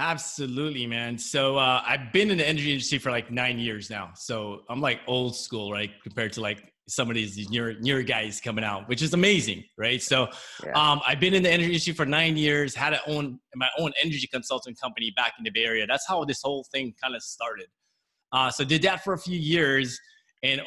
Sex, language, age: male, English, 20-39